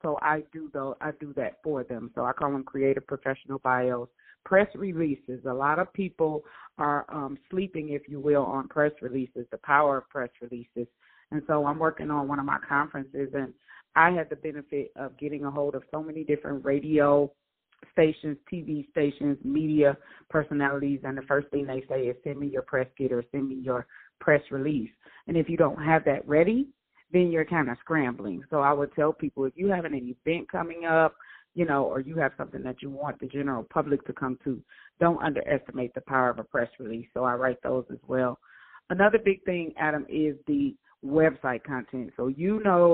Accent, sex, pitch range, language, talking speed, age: American, female, 135-160 Hz, English, 205 wpm, 30-49